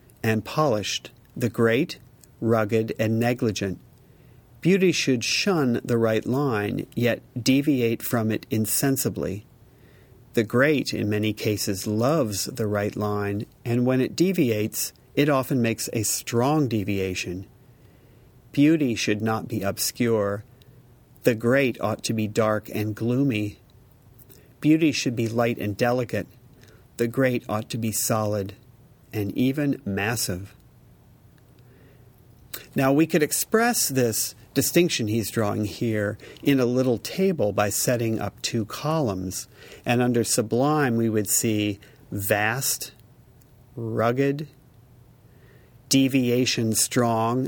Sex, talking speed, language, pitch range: male, 120 wpm, English, 110-130 Hz